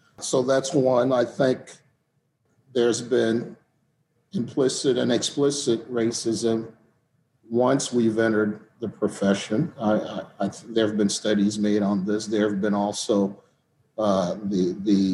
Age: 50-69